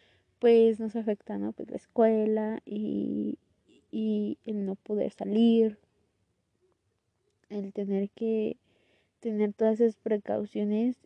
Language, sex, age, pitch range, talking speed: Spanish, female, 20-39, 210-235 Hz, 110 wpm